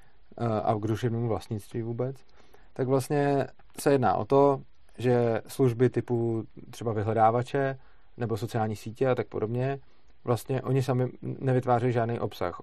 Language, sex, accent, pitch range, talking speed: Czech, male, native, 105-125 Hz, 130 wpm